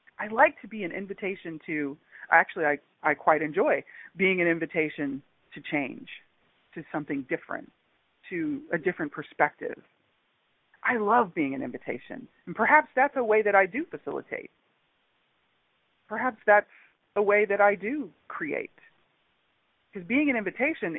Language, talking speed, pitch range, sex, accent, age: English, 145 wpm, 160-210 Hz, female, American, 40-59